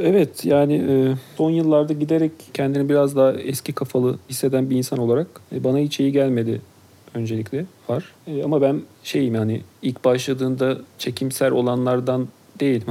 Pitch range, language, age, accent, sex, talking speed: 125-155 Hz, Turkish, 40-59, native, male, 150 wpm